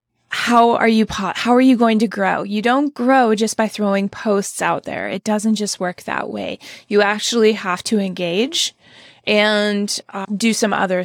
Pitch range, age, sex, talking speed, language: 180-220 Hz, 20-39, female, 185 wpm, English